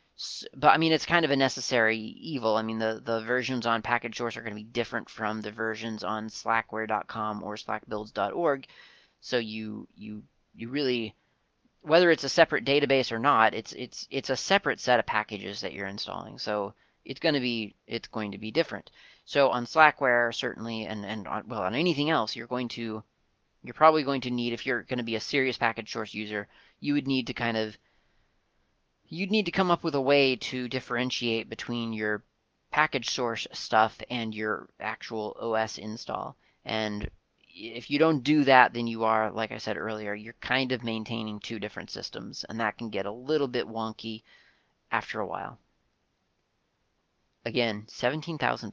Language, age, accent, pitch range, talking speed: English, 30-49, American, 110-130 Hz, 185 wpm